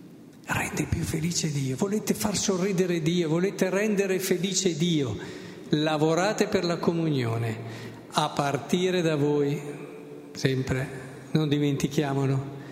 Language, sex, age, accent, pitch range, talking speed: Italian, male, 50-69, native, 150-220 Hz, 110 wpm